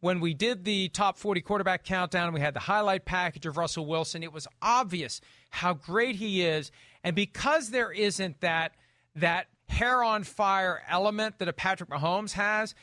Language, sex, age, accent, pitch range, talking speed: English, male, 40-59, American, 160-200 Hz, 180 wpm